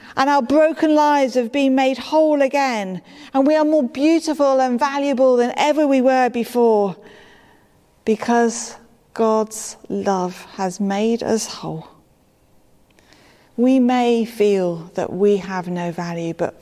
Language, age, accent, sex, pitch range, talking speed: English, 40-59, British, female, 185-250 Hz, 135 wpm